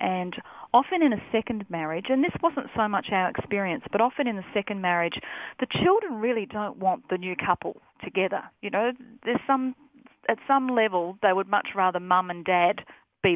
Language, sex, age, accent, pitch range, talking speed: English, female, 40-59, Australian, 180-230 Hz, 195 wpm